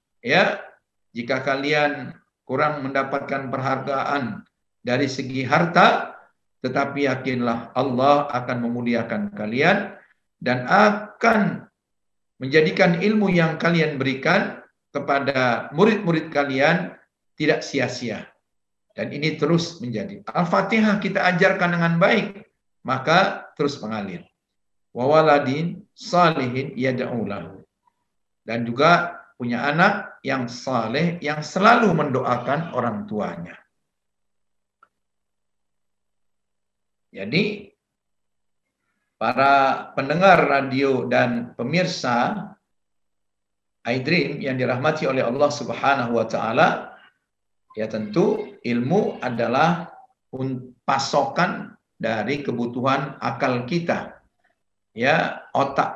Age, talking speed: 50-69, 85 wpm